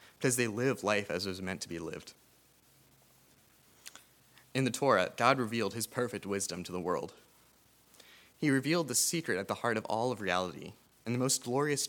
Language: English